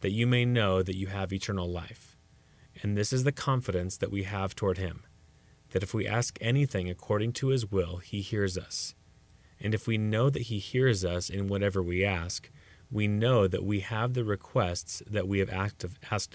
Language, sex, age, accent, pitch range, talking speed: English, male, 30-49, American, 95-120 Hz, 200 wpm